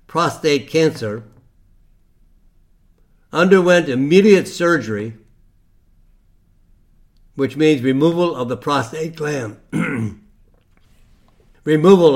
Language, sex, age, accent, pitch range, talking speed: English, male, 60-79, American, 100-160 Hz, 65 wpm